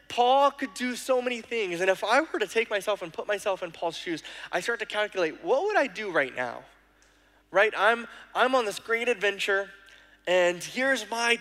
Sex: male